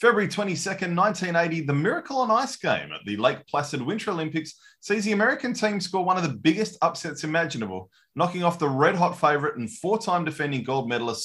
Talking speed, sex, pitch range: 185 wpm, male, 135-180 Hz